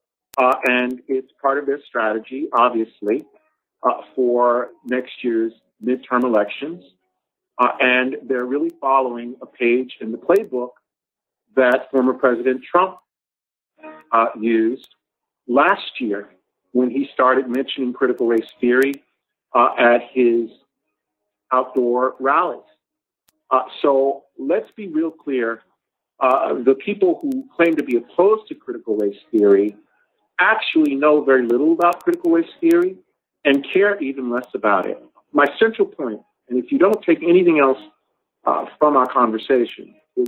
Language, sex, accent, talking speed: English, male, American, 135 wpm